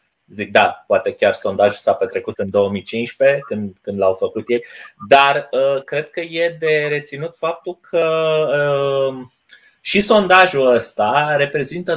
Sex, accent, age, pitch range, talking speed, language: male, native, 20-39, 115-170 Hz, 140 wpm, Romanian